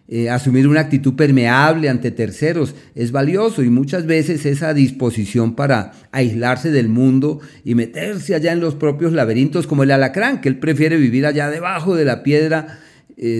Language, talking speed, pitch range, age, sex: Spanish, 170 wpm, 125-155 Hz, 40-59, male